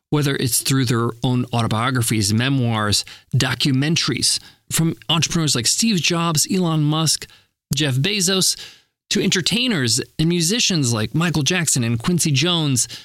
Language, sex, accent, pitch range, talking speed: English, male, American, 135-190 Hz, 125 wpm